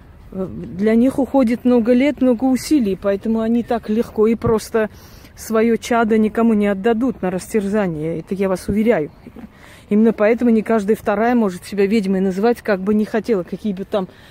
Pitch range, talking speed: 190-230 Hz, 170 wpm